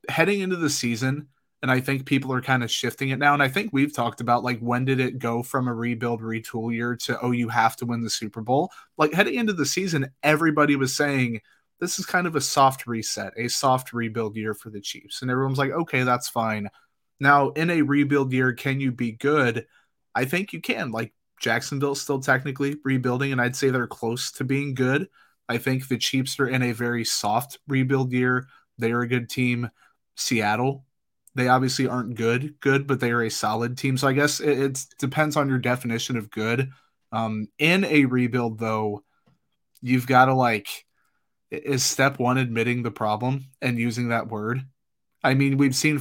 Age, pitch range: 30-49, 120-135 Hz